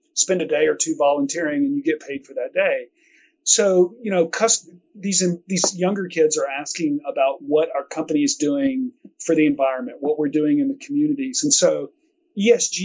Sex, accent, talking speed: male, American, 195 wpm